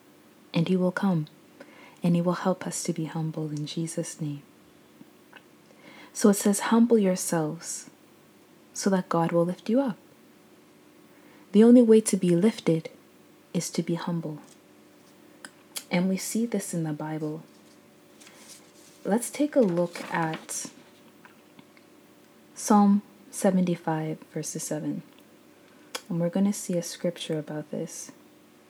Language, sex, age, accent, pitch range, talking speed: English, female, 30-49, American, 165-210 Hz, 130 wpm